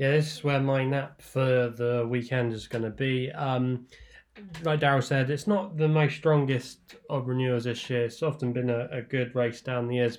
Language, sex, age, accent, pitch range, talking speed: English, male, 20-39, British, 115-130 Hz, 210 wpm